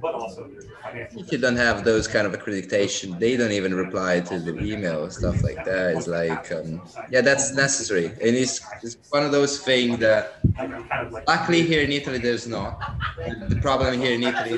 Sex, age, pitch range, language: male, 20-39, 95-120 Hz, Italian